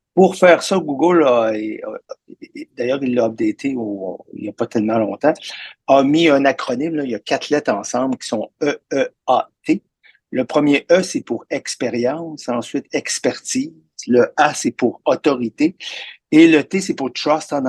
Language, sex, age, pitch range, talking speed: French, male, 50-69, 115-170 Hz, 190 wpm